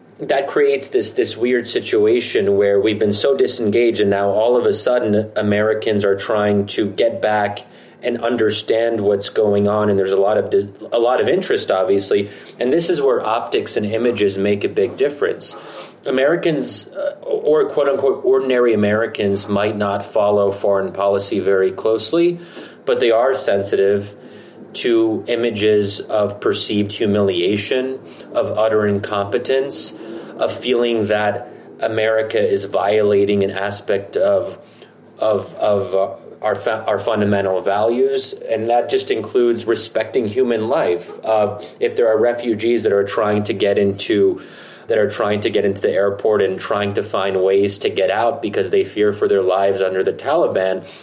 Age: 30-49